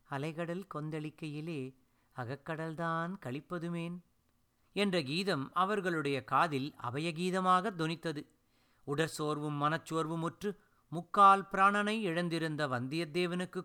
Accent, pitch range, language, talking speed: native, 135-190 Hz, Tamil, 70 wpm